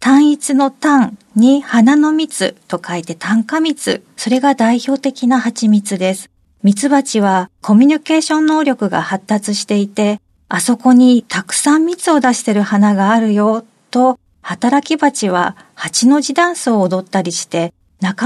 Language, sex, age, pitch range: Japanese, female, 40-59, 190-275 Hz